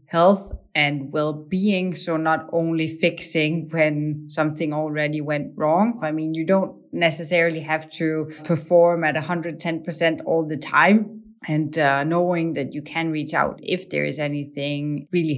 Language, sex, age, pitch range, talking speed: English, female, 30-49, 145-165 Hz, 150 wpm